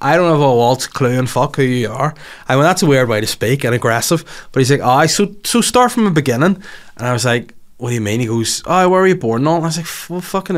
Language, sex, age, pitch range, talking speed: English, male, 20-39, 115-150 Hz, 295 wpm